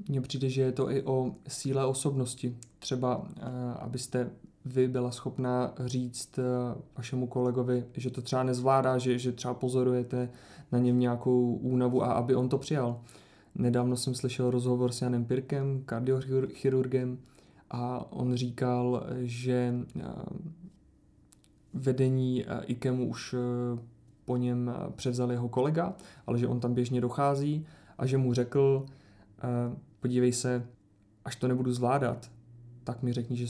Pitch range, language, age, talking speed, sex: 125-135 Hz, Czech, 20-39, 135 wpm, male